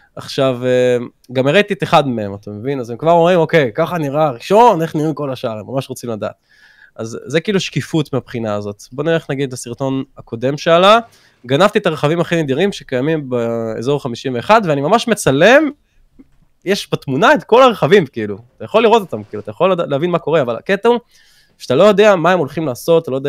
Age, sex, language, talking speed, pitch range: 20-39, male, Hebrew, 195 wpm, 125-175 Hz